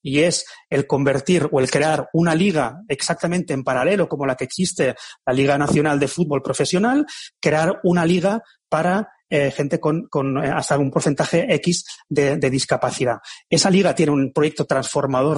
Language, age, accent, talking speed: Spanish, 30-49, Spanish, 170 wpm